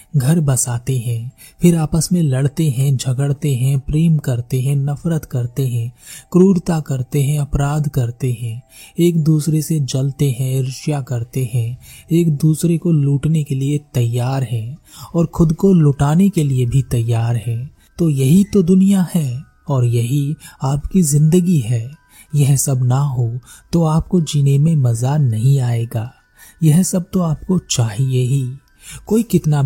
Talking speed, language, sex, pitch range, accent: 155 wpm, Hindi, male, 130-165 Hz, native